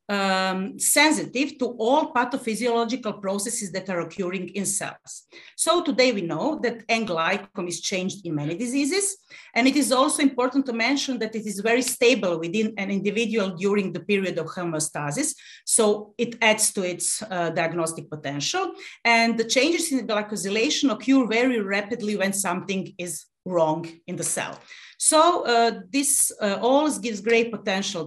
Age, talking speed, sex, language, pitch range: 40-59, 160 wpm, female, English, 180-245 Hz